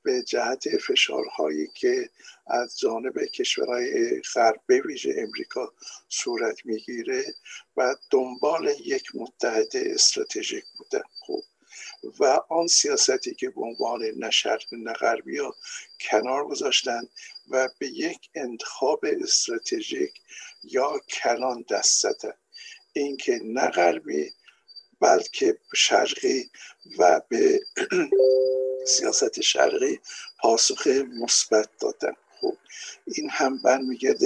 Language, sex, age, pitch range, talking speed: Persian, male, 60-79, 365-430 Hz, 95 wpm